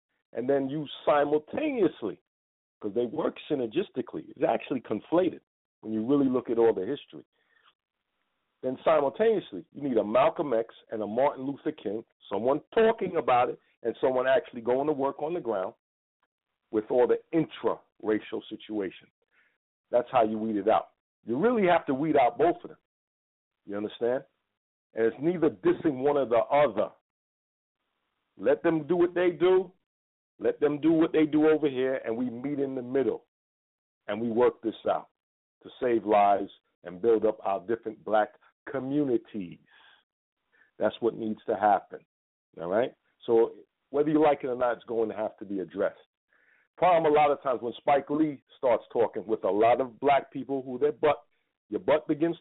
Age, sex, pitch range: 50-69, male, 110-150 Hz